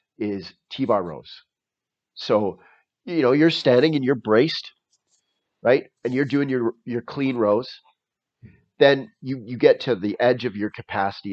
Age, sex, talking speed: 30-49, male, 155 wpm